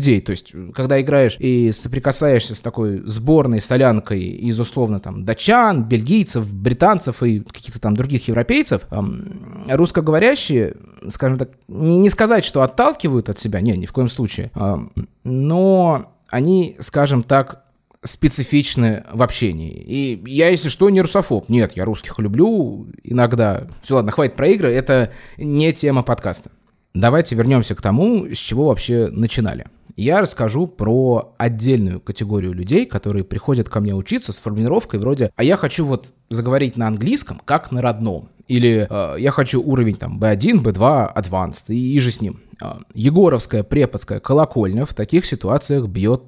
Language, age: Russian, 20-39